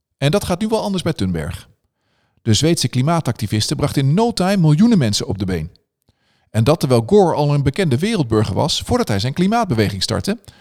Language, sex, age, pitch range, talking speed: Dutch, male, 50-69, 105-175 Hz, 190 wpm